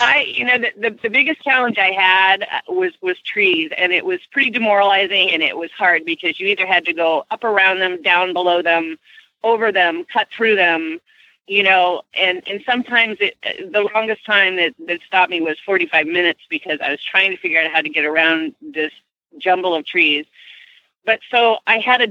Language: English